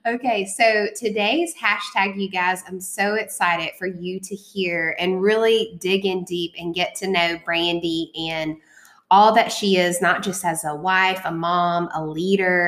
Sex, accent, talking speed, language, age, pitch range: female, American, 175 wpm, English, 20-39, 170-195 Hz